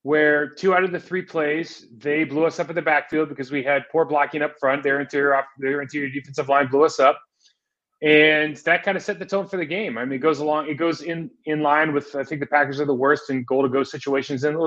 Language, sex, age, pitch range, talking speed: English, male, 30-49, 135-155 Hz, 265 wpm